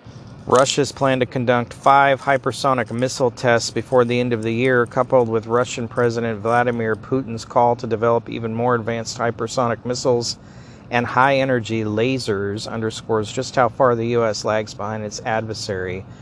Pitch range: 110-125 Hz